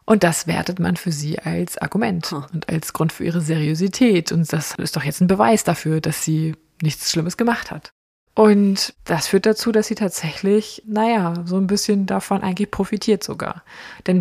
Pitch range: 165-205 Hz